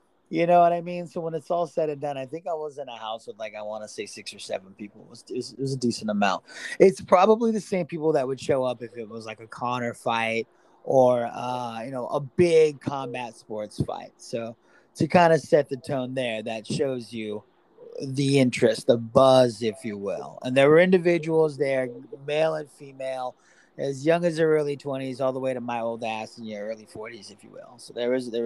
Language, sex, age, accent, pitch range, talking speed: English, male, 30-49, American, 120-170 Hz, 235 wpm